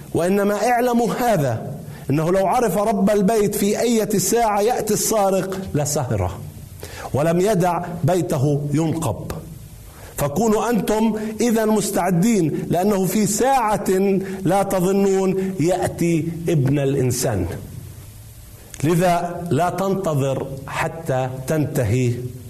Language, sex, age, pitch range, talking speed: Arabic, male, 50-69, 140-200 Hz, 95 wpm